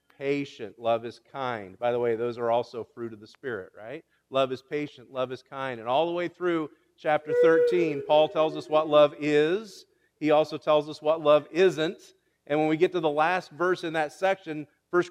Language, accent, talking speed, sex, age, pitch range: English, American, 210 wpm, male, 40-59, 140-205 Hz